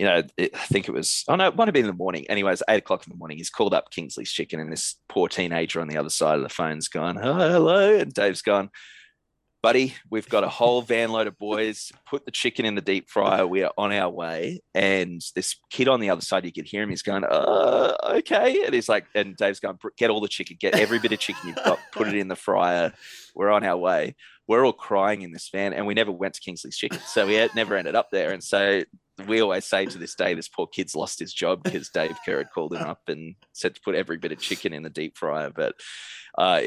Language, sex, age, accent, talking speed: English, male, 20-39, Australian, 260 wpm